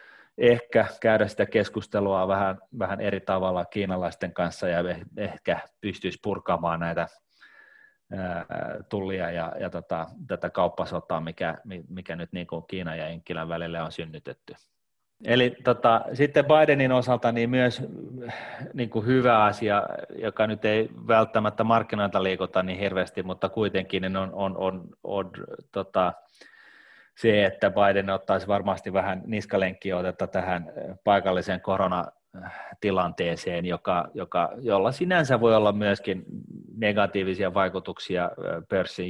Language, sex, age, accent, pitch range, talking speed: Finnish, male, 30-49, native, 95-110 Hz, 125 wpm